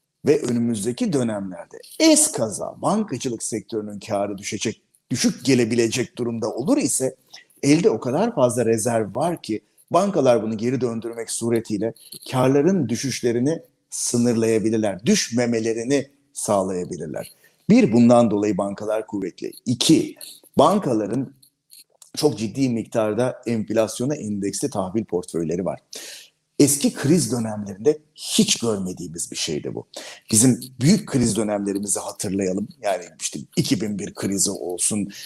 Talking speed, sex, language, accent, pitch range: 110 wpm, male, Turkish, native, 105-140 Hz